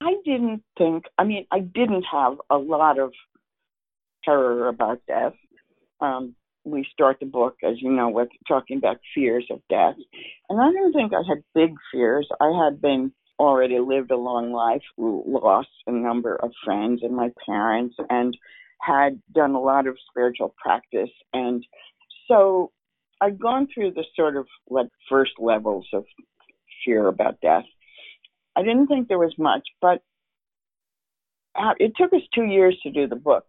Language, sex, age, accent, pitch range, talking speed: English, female, 50-69, American, 130-205 Hz, 165 wpm